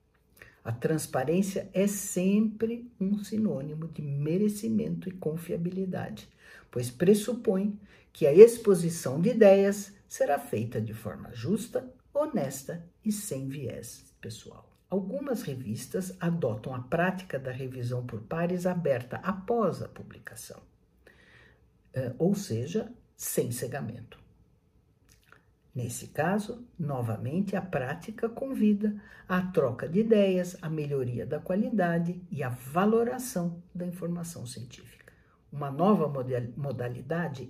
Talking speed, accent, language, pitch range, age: 105 wpm, Brazilian, Portuguese, 145-205 Hz, 60-79